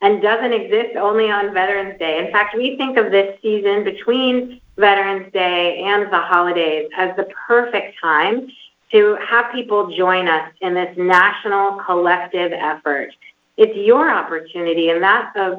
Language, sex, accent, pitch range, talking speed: English, female, American, 175-225 Hz, 155 wpm